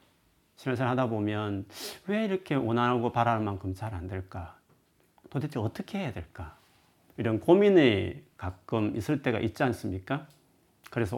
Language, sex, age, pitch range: Korean, male, 40-59, 100-130 Hz